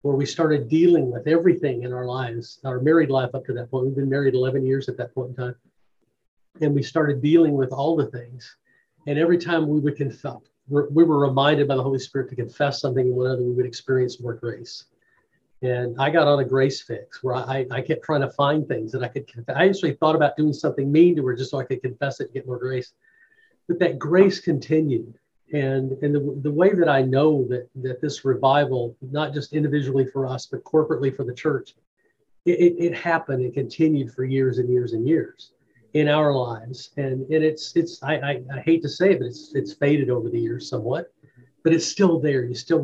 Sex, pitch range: male, 130-155 Hz